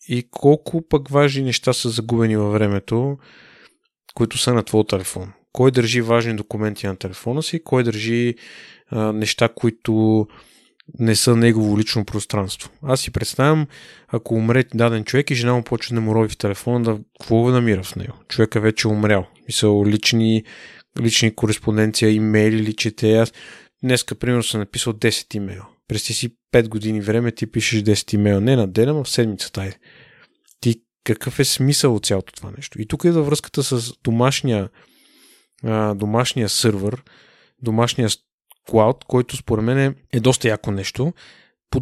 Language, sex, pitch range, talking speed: Bulgarian, male, 110-135 Hz, 165 wpm